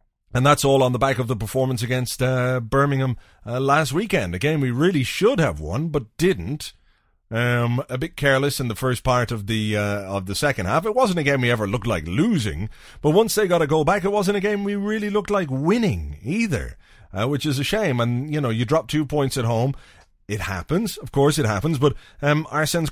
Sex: male